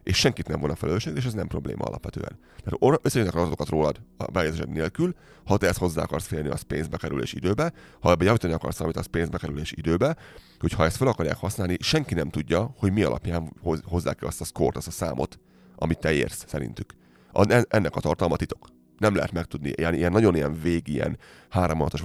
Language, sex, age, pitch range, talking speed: Hungarian, male, 30-49, 75-95 Hz, 195 wpm